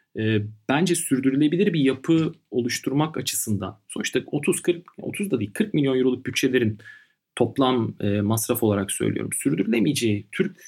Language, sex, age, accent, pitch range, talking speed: Turkish, male, 40-59, native, 110-135 Hz, 120 wpm